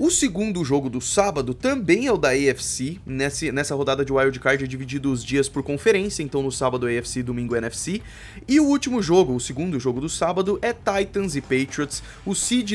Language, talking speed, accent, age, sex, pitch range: Portuguese, 205 wpm, Brazilian, 20-39, male, 130-200 Hz